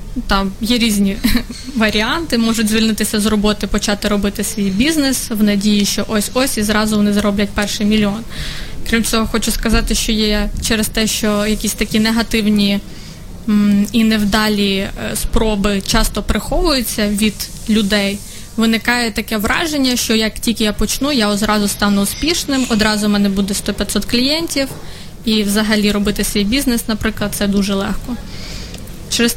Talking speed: 140 wpm